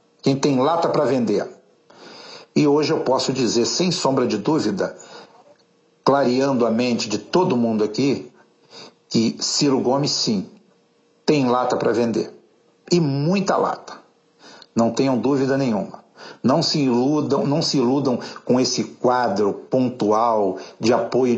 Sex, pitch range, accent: male, 115-145 Hz, Brazilian